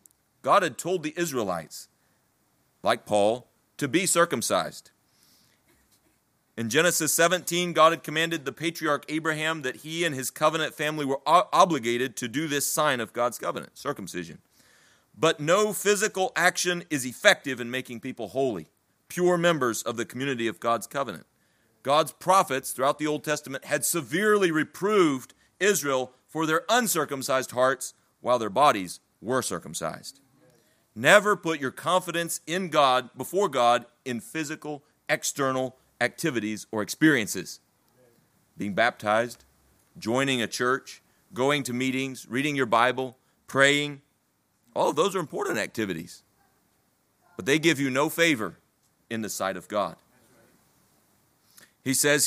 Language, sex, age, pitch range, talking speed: English, male, 40-59, 125-170 Hz, 135 wpm